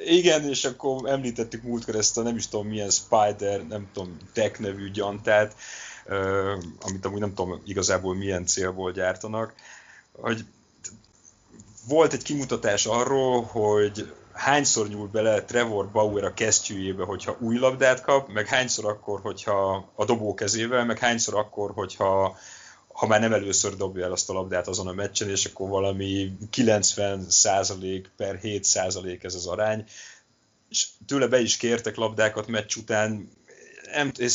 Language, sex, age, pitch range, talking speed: Hungarian, male, 30-49, 95-115 Hz, 145 wpm